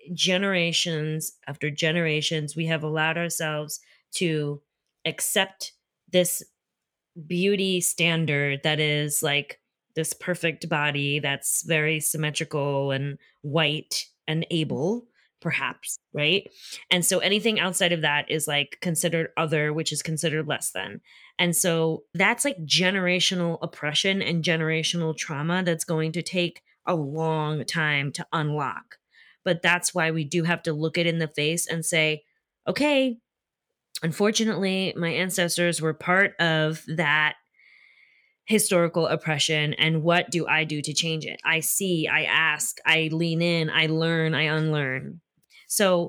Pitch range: 155-180 Hz